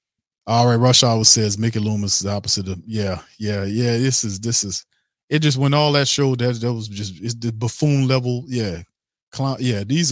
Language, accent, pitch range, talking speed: English, American, 95-115 Hz, 215 wpm